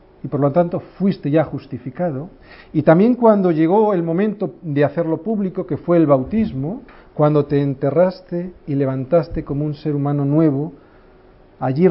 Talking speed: 155 wpm